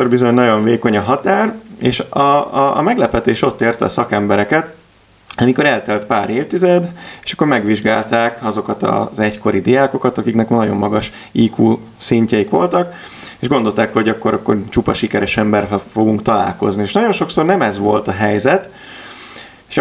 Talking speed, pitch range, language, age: 150 wpm, 105-135 Hz, Hungarian, 30-49